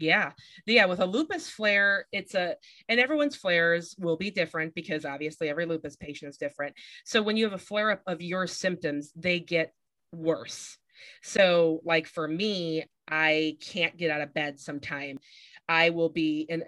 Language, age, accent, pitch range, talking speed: English, 30-49, American, 155-185 Hz, 175 wpm